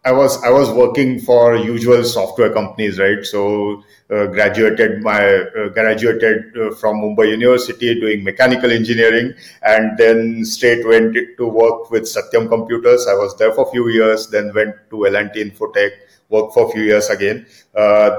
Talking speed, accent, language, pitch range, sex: 175 wpm, Indian, English, 110-125 Hz, male